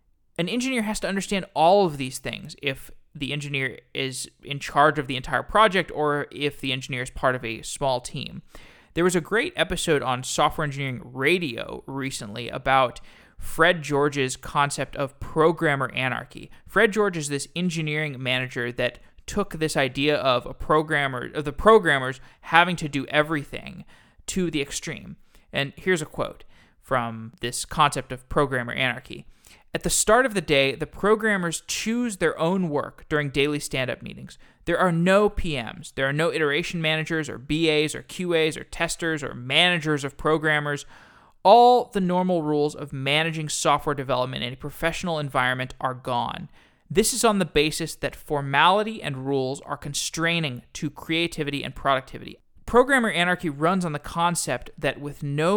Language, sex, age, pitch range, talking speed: English, male, 20-39, 135-170 Hz, 165 wpm